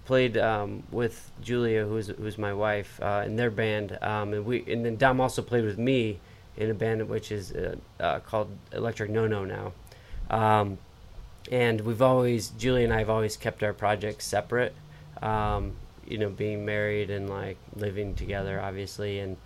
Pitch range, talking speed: 105-120 Hz, 180 wpm